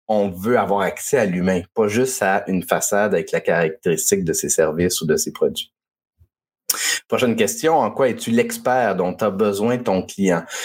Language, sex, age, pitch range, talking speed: French, male, 30-49, 90-120 Hz, 185 wpm